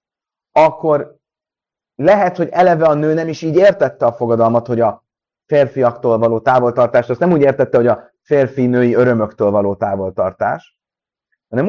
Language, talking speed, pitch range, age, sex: Hungarian, 145 wpm, 110-150 Hz, 30-49, male